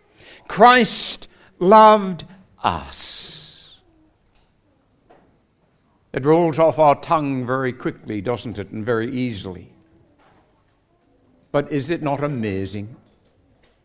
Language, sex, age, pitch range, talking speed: English, male, 60-79, 120-195 Hz, 85 wpm